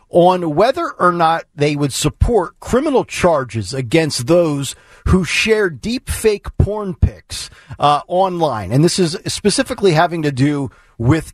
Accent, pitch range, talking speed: American, 130-210 Hz, 145 wpm